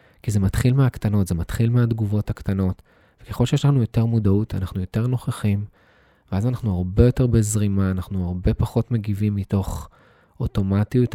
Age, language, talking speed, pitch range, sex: 20-39, Hebrew, 145 wpm, 95-115 Hz, male